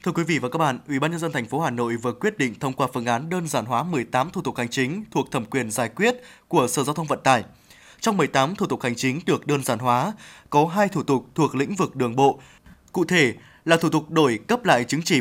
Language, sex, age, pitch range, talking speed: Vietnamese, male, 20-39, 135-165 Hz, 270 wpm